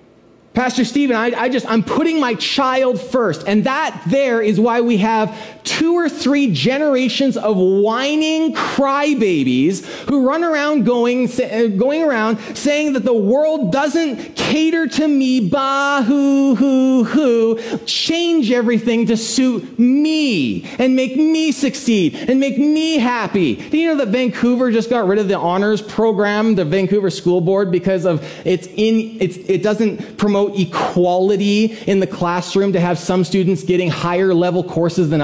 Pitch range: 200-280 Hz